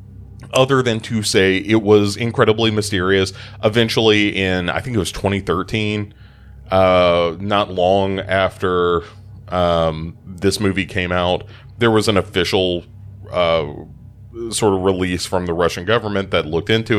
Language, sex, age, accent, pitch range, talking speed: English, male, 30-49, American, 95-110 Hz, 140 wpm